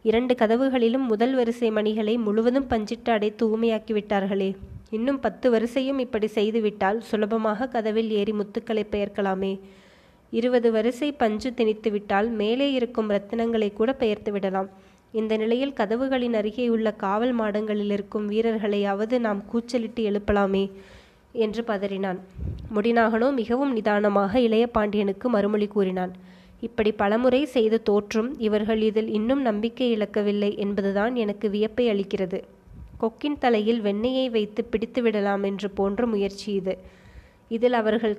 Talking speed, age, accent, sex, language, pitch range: 120 wpm, 20-39, native, female, Tamil, 205-235 Hz